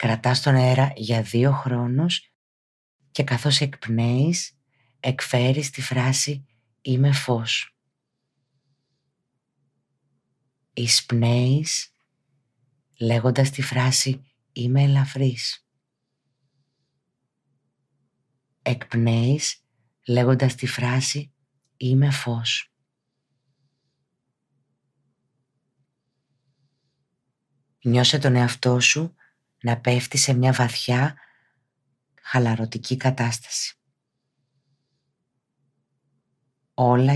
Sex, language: female, Greek